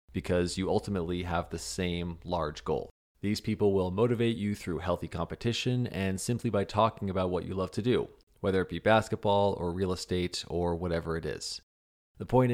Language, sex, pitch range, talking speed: English, male, 90-105 Hz, 185 wpm